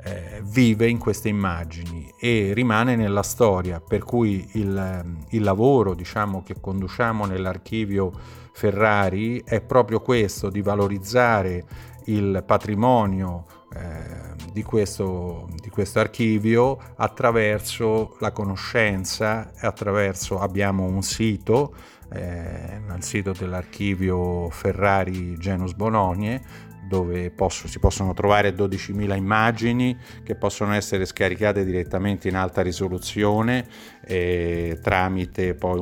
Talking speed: 105 wpm